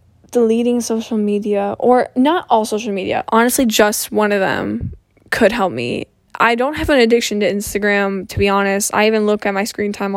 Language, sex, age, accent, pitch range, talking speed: English, female, 10-29, American, 200-235 Hz, 195 wpm